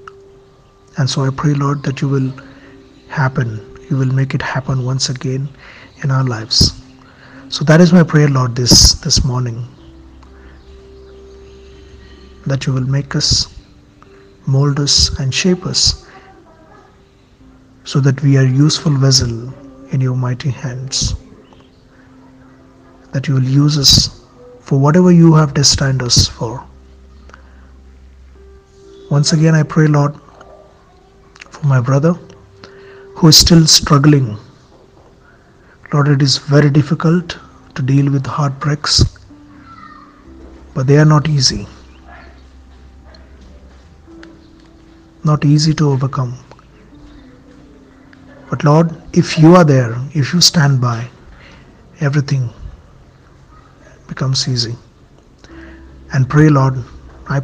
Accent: native